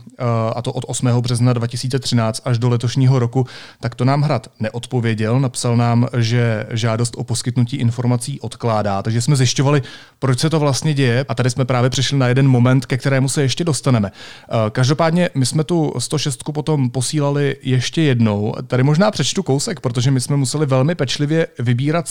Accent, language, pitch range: native, Czech, 120-145 Hz